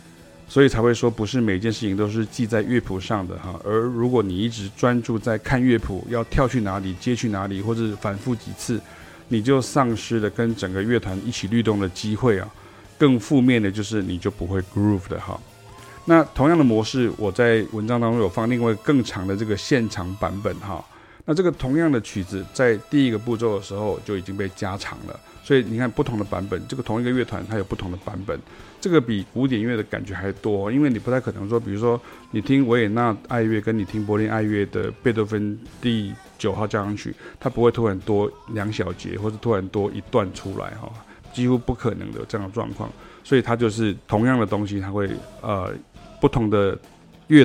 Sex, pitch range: male, 100-120 Hz